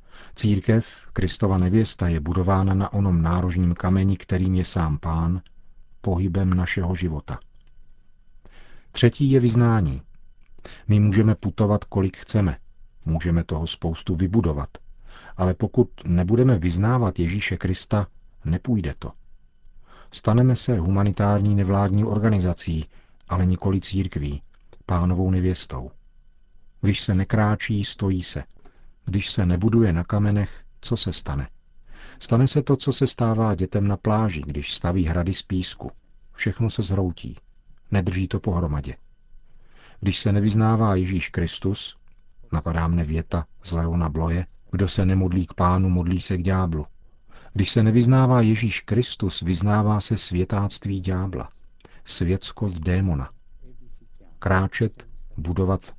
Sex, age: male, 40-59